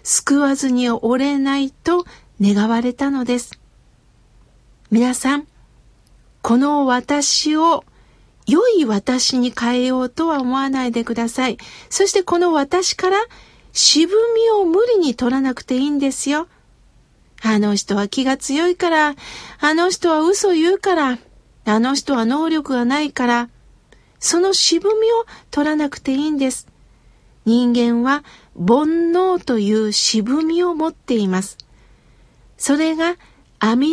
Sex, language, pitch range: female, Japanese, 245-335 Hz